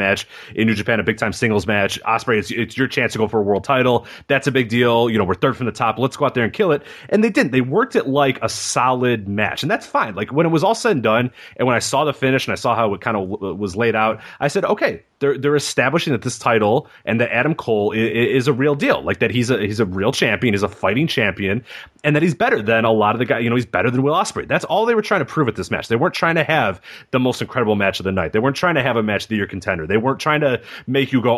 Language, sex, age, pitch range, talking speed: English, male, 30-49, 110-150 Hz, 310 wpm